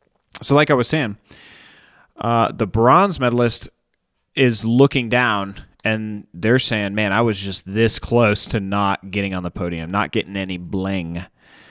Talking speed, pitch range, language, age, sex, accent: 160 wpm, 95-125 Hz, English, 30-49, male, American